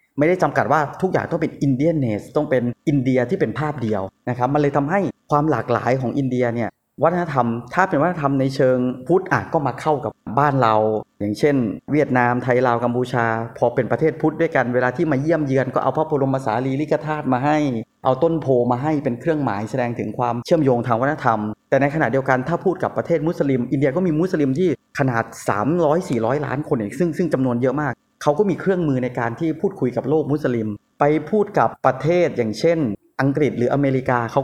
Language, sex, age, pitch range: Thai, male, 20-39, 120-155 Hz